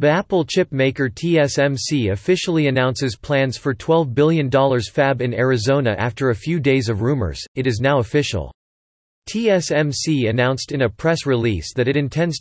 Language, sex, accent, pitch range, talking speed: English, male, American, 120-150 Hz, 155 wpm